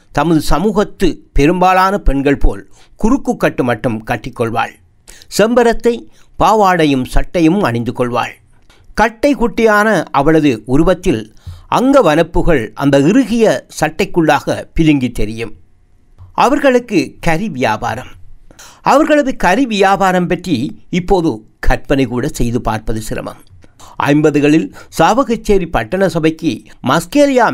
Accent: native